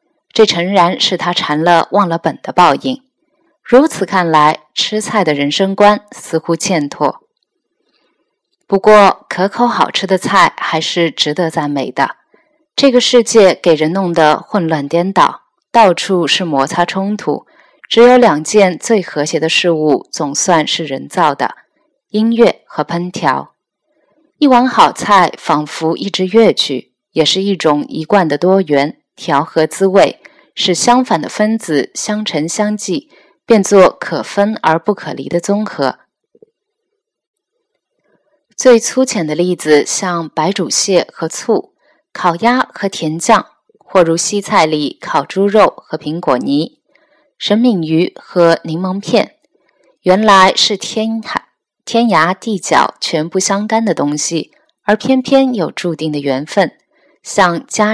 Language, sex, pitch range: Chinese, female, 160-225 Hz